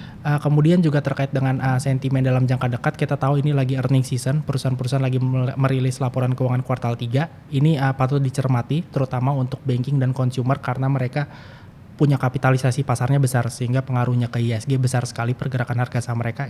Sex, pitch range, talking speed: male, 120-135 Hz, 175 wpm